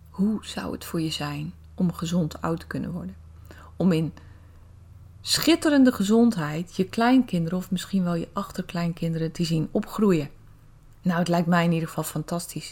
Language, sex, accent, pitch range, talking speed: Dutch, female, Dutch, 160-215 Hz, 160 wpm